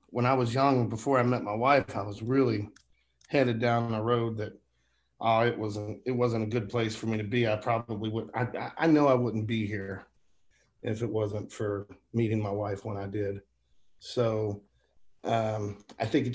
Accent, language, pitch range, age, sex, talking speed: American, English, 110-130 Hz, 40-59, male, 200 wpm